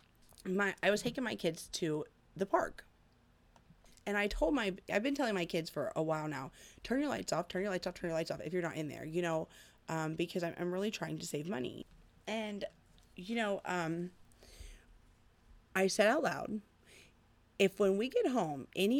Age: 30-49